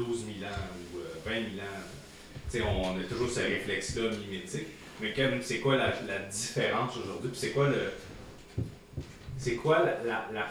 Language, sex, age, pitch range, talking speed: French, male, 30-49, 100-130 Hz, 165 wpm